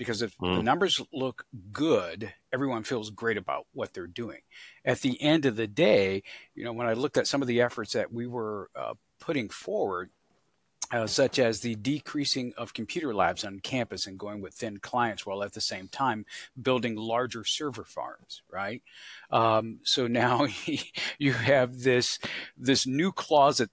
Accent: American